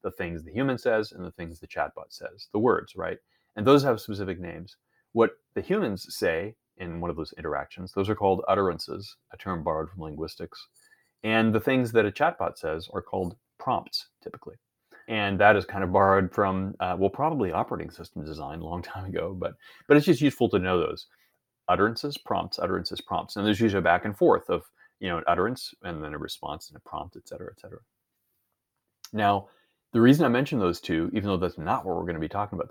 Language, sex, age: English, male, 30-49